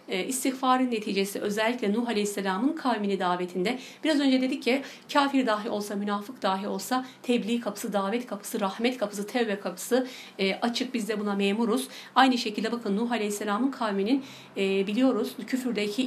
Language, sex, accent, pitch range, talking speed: Turkish, female, native, 195-245 Hz, 150 wpm